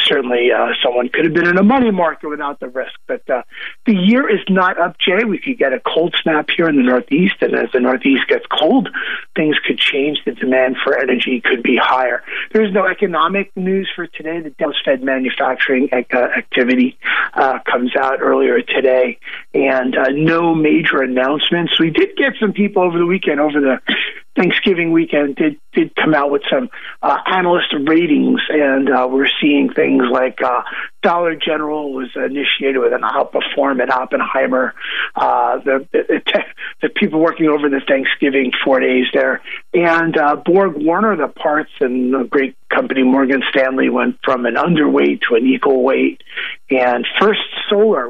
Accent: American